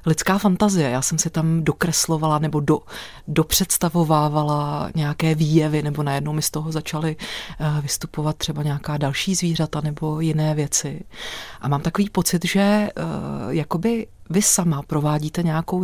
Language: Czech